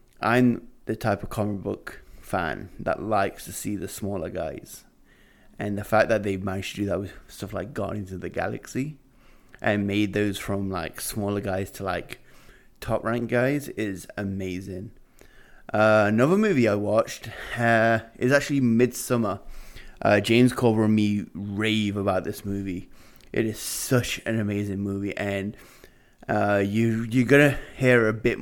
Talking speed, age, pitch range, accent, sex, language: 160 wpm, 20-39, 100-120 Hz, British, male, English